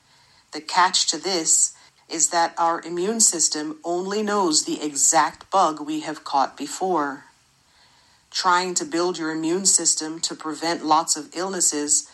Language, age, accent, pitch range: Japanese, 50-69, American, 150-190 Hz